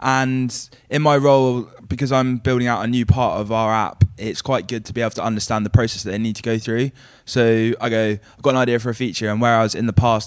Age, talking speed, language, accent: 20-39, 270 wpm, English, British